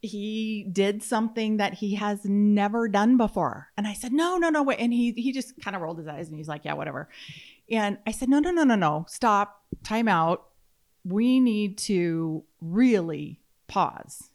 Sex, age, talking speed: female, 30-49, 190 wpm